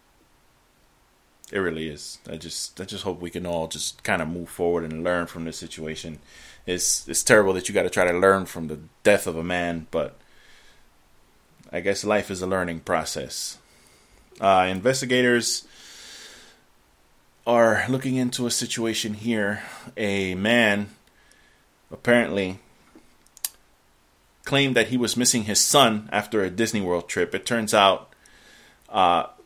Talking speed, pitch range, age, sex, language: 145 wpm, 80-105 Hz, 20-39, male, English